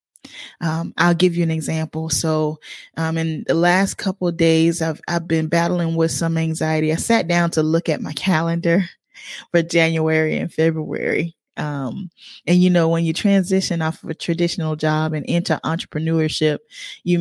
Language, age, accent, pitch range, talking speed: English, 20-39, American, 160-195 Hz, 170 wpm